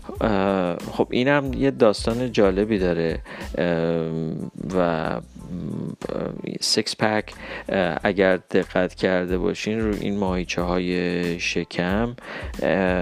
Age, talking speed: 30-49, 85 wpm